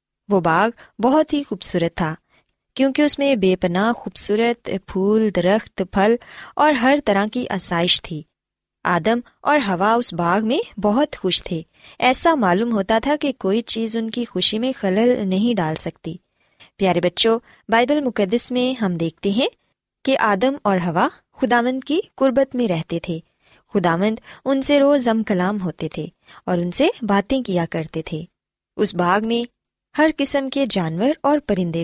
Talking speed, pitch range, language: 165 wpm, 180-260 Hz, Urdu